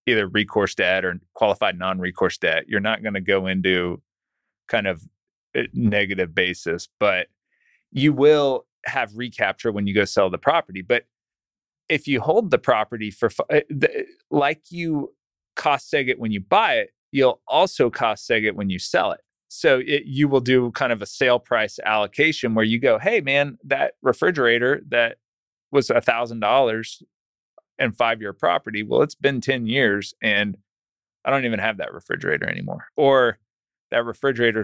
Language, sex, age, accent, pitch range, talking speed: English, male, 30-49, American, 100-125 Hz, 160 wpm